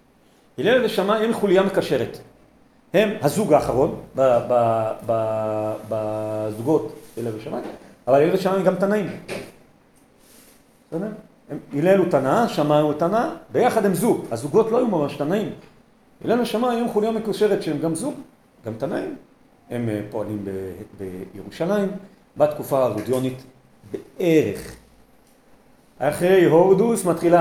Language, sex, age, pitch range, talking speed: Hebrew, male, 40-59, 135-200 Hz, 120 wpm